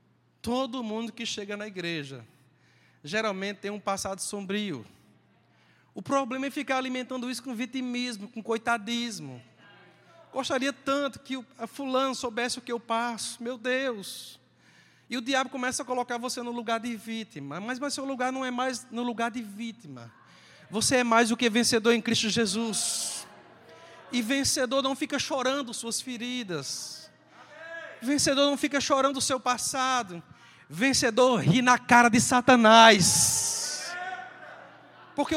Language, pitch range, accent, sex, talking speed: Portuguese, 230-290 Hz, Brazilian, male, 140 wpm